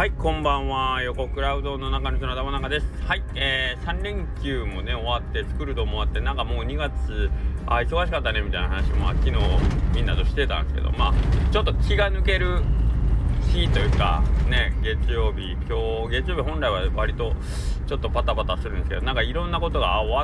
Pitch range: 65-85 Hz